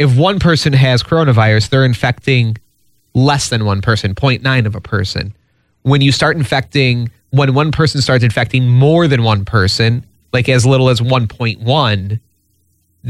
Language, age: English, 30-49